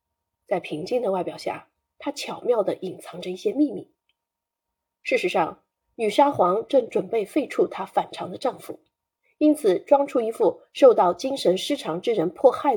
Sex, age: female, 30-49